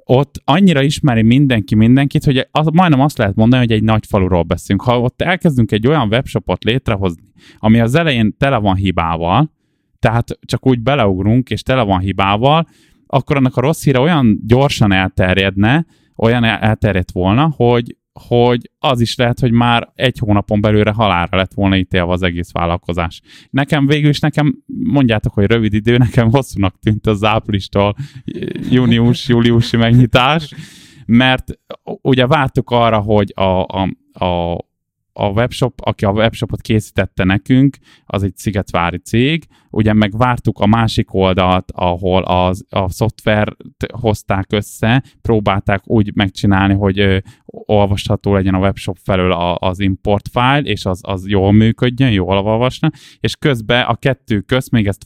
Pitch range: 100-130 Hz